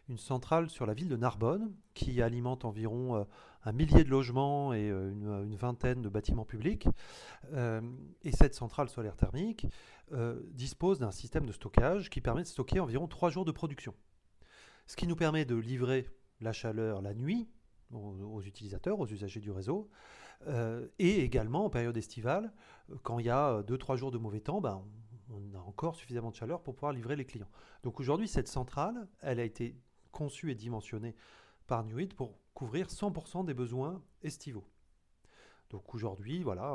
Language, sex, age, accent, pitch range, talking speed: French, male, 30-49, French, 110-160 Hz, 180 wpm